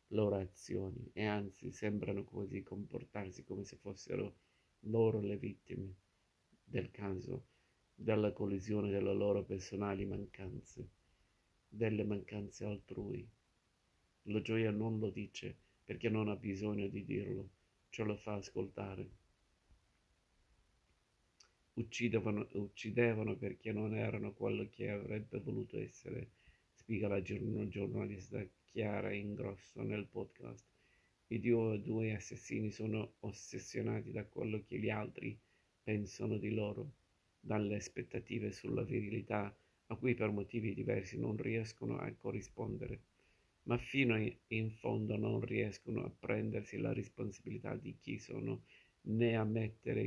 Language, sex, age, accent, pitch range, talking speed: Italian, male, 50-69, native, 100-115 Hz, 120 wpm